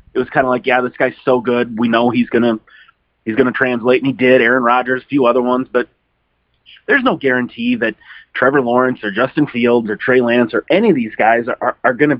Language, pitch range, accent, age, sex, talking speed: English, 125-165 Hz, American, 30-49, male, 230 wpm